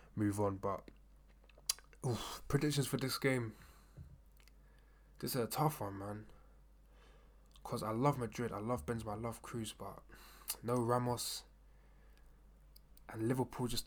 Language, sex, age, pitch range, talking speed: English, male, 20-39, 100-120 Hz, 130 wpm